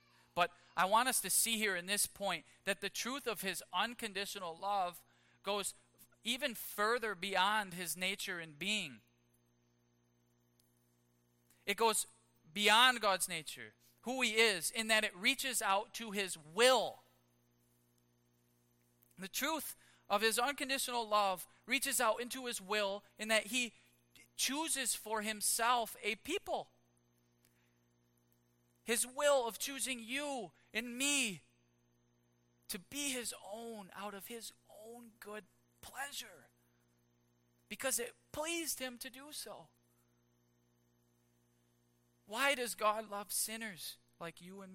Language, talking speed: English, 125 wpm